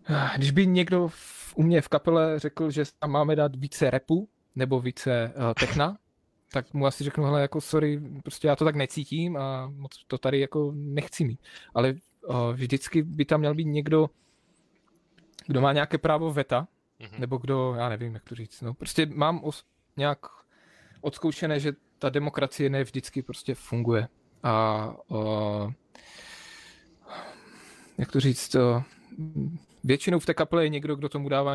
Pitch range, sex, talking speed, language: 125-150 Hz, male, 165 wpm, Czech